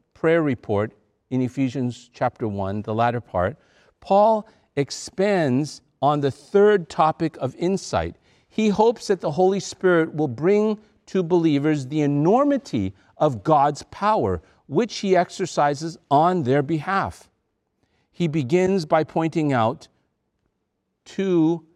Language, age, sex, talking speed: English, 50-69, male, 120 wpm